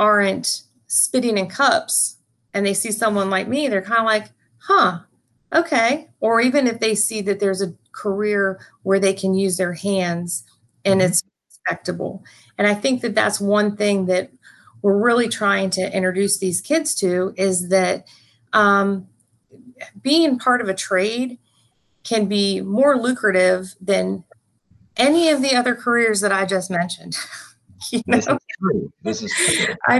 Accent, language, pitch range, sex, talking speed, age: American, English, 190-240 Hz, female, 145 wpm, 30-49